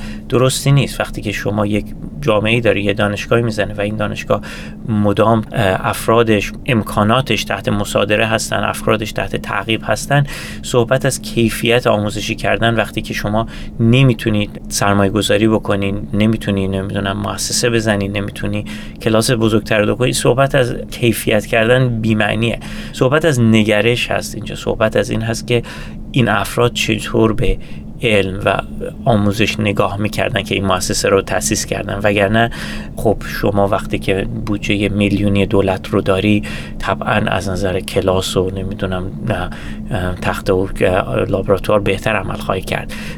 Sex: male